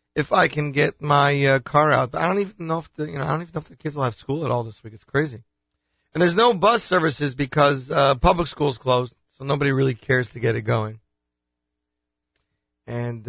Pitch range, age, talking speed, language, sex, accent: 120-185 Hz, 40-59, 235 wpm, English, male, American